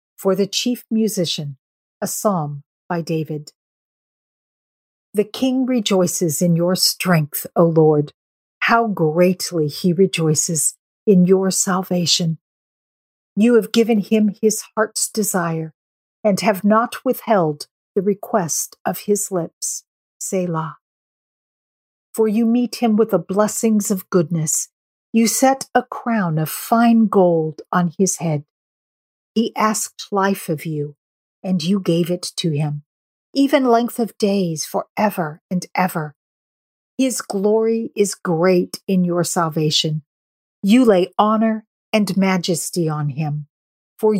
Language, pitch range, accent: English, 165-220 Hz, American